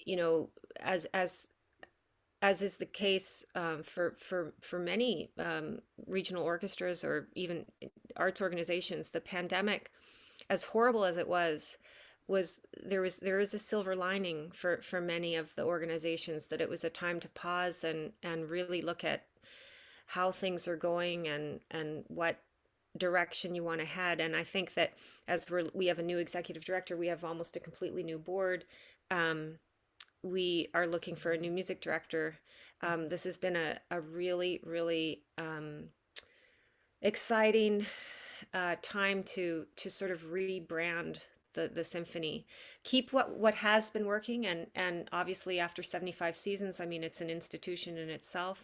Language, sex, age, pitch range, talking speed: English, female, 30-49, 165-185 Hz, 165 wpm